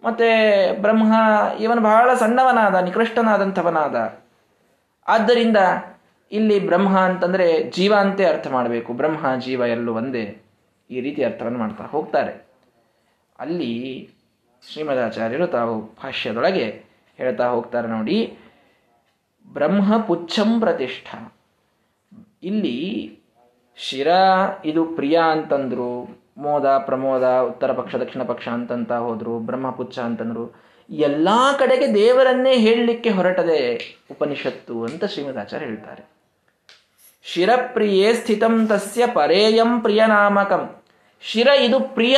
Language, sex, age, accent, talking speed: Kannada, male, 20-39, native, 90 wpm